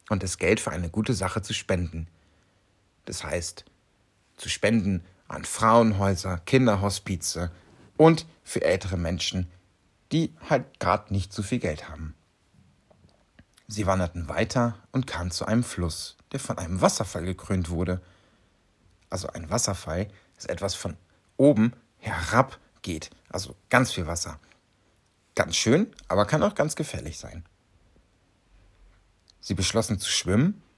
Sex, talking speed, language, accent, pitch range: male, 130 wpm, German, German, 90-120 Hz